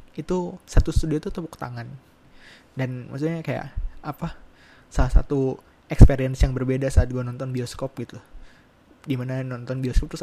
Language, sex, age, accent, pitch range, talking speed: Indonesian, male, 20-39, native, 125-145 Hz, 140 wpm